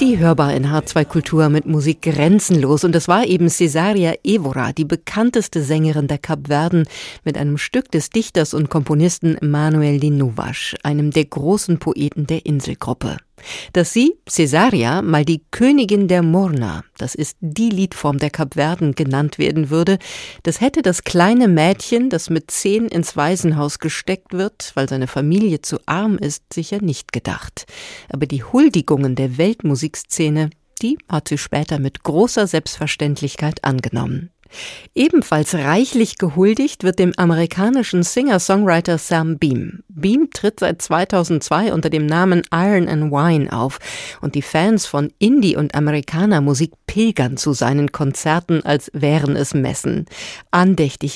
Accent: German